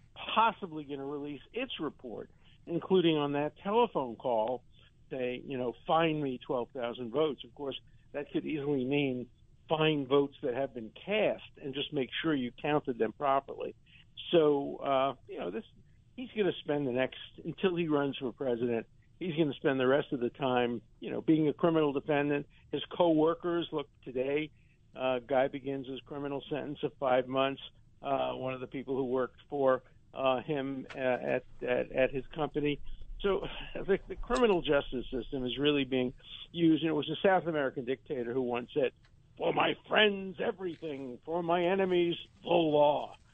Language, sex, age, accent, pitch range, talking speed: English, male, 50-69, American, 125-160 Hz, 180 wpm